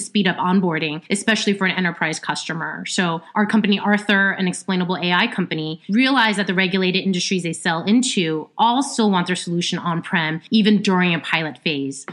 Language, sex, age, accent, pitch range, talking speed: English, female, 30-49, American, 170-215 Hz, 180 wpm